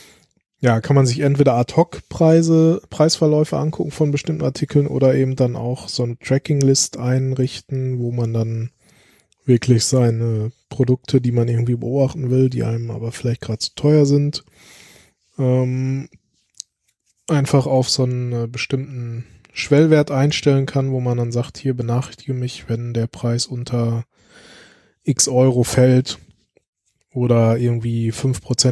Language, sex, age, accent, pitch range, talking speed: German, male, 20-39, German, 115-135 Hz, 135 wpm